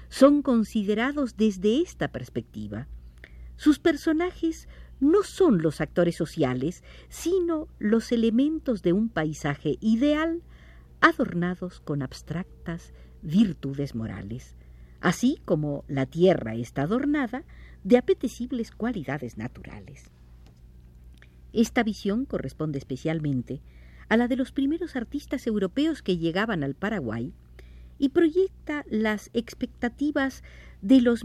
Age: 50-69